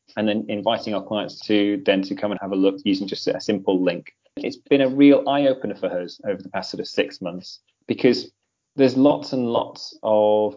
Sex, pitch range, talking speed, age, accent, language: male, 100-130 Hz, 220 wpm, 30-49, British, English